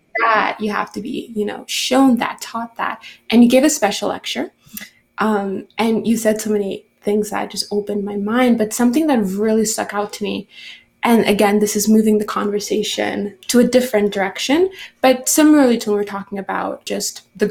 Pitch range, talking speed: 205-240 Hz, 195 wpm